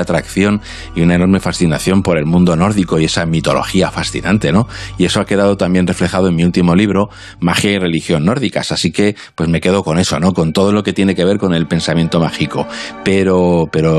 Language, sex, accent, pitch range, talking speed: Spanish, male, Spanish, 85-100 Hz, 210 wpm